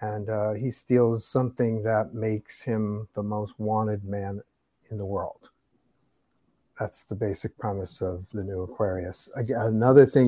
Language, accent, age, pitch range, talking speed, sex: English, American, 50-69, 105-130 Hz, 145 wpm, male